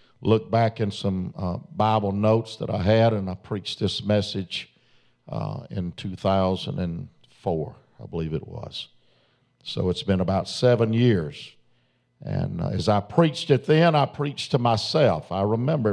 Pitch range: 95-115 Hz